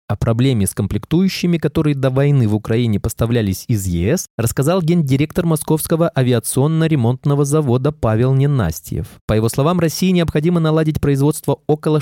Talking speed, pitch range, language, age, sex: 135 wpm, 110-155 Hz, Russian, 20-39, male